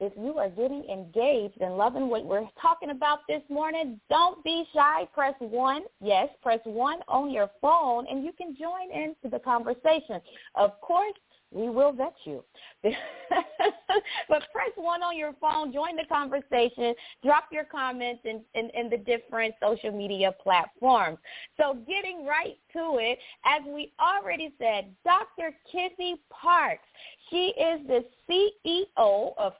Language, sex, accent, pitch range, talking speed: English, female, American, 235-335 Hz, 150 wpm